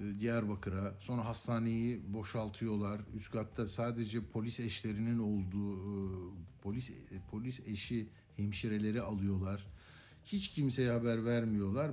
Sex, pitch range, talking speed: male, 100-130 Hz, 95 wpm